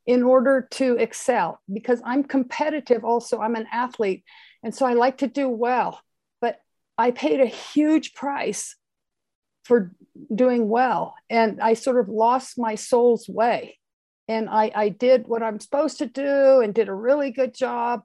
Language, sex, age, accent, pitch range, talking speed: English, female, 50-69, American, 230-285 Hz, 165 wpm